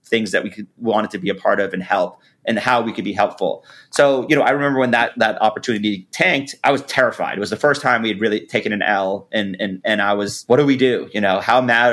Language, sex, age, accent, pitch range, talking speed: English, male, 30-49, American, 100-130 Hz, 275 wpm